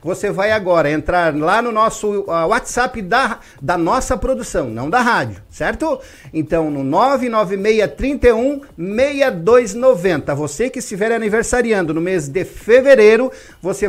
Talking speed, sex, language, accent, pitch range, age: 125 wpm, male, Portuguese, Brazilian, 185-260 Hz, 50-69